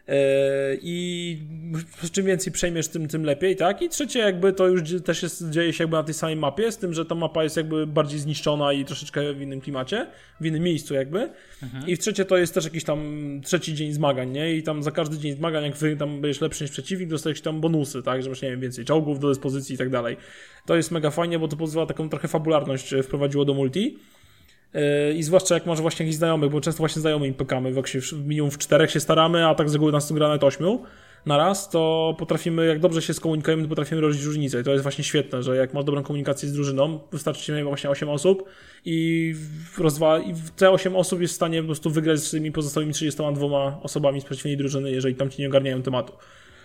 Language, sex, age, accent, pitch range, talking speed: Polish, male, 20-39, native, 145-165 Hz, 230 wpm